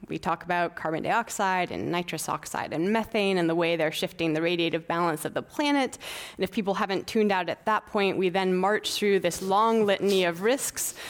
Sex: female